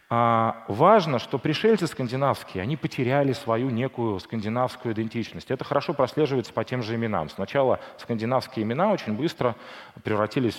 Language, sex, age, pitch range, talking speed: Russian, male, 30-49, 100-135 Hz, 125 wpm